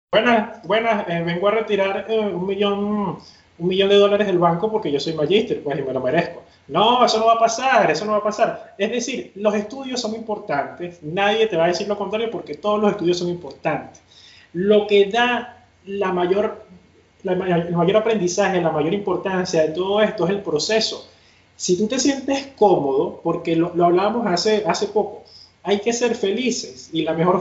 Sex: male